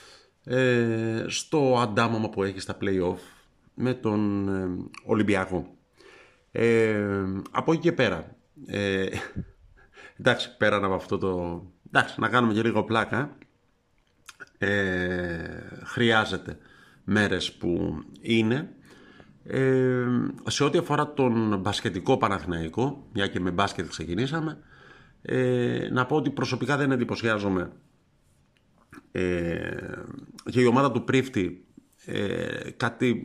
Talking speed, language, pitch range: 105 wpm, Greek, 95-125 Hz